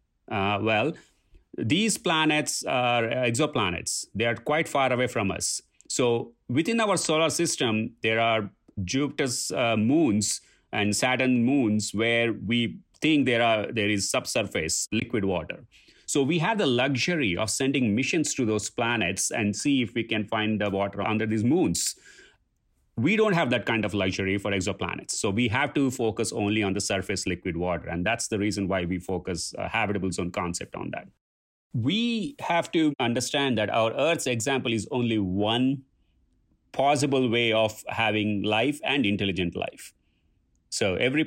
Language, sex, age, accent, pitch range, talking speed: English, male, 30-49, Indian, 100-125 Hz, 165 wpm